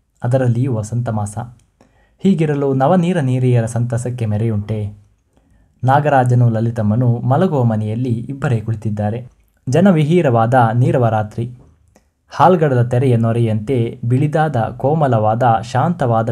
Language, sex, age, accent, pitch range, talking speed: Kannada, male, 20-39, native, 115-135 Hz, 75 wpm